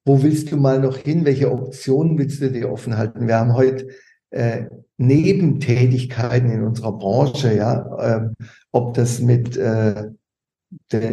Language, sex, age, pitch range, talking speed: German, male, 50-69, 120-145 Hz, 150 wpm